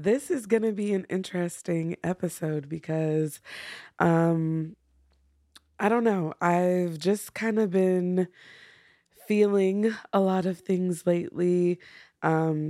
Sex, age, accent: female, 20-39, American